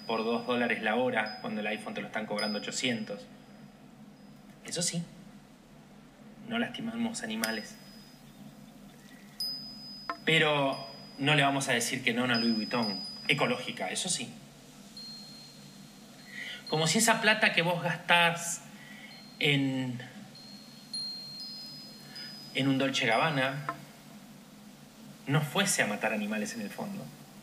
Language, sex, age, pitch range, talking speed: Spanish, male, 30-49, 140-225 Hz, 115 wpm